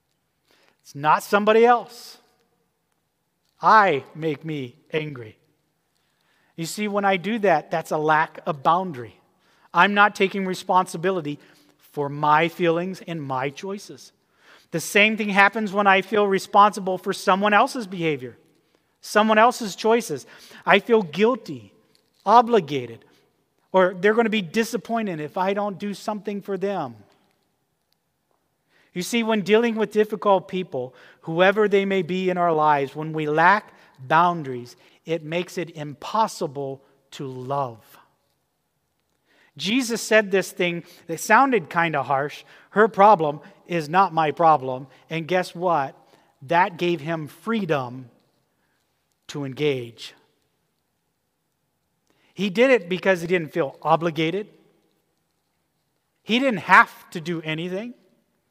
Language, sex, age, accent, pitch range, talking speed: English, male, 40-59, American, 155-210 Hz, 125 wpm